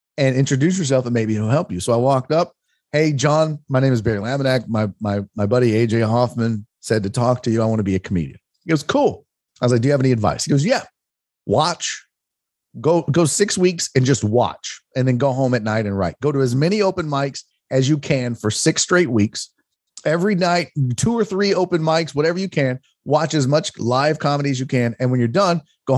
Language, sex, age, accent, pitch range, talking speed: English, male, 30-49, American, 125-180 Hz, 235 wpm